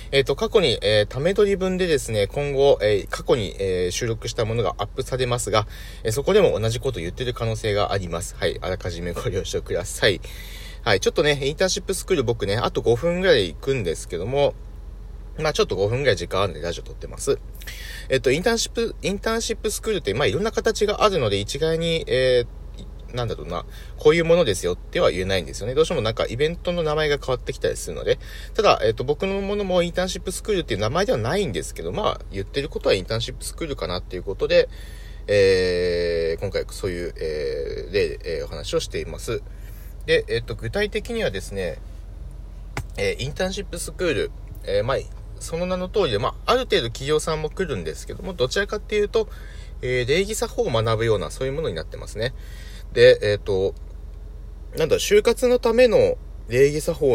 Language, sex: Japanese, male